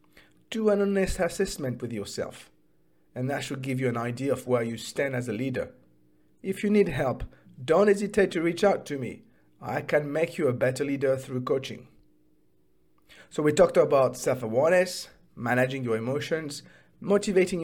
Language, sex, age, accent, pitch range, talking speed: English, male, 50-69, South African, 125-175 Hz, 165 wpm